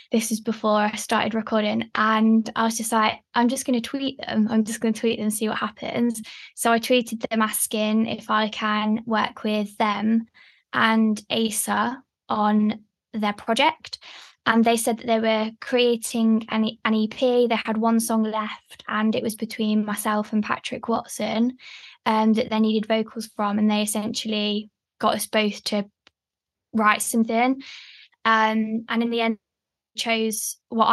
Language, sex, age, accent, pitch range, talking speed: English, female, 10-29, British, 215-235 Hz, 175 wpm